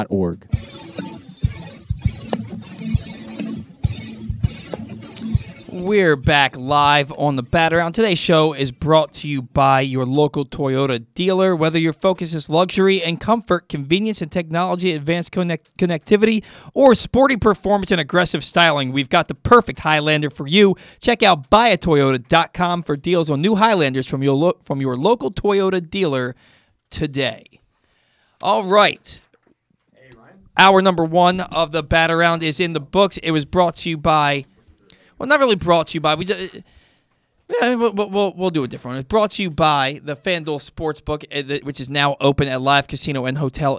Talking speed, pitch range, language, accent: 155 wpm, 140-185 Hz, English, American